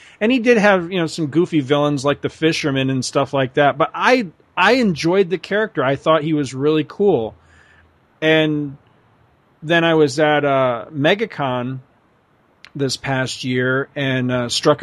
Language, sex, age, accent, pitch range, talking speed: English, male, 40-59, American, 130-165 Hz, 165 wpm